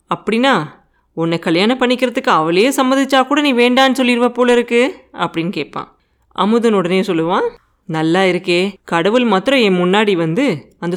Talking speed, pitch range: 130 wpm, 180-255 Hz